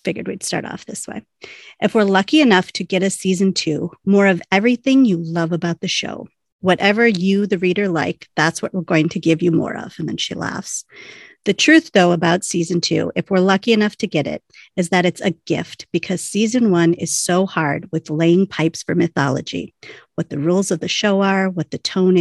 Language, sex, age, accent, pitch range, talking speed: English, female, 40-59, American, 165-195 Hz, 215 wpm